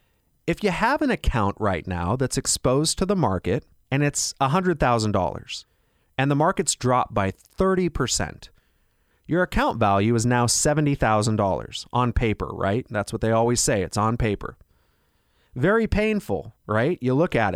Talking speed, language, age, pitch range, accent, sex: 150 wpm, English, 30-49, 115-175 Hz, American, male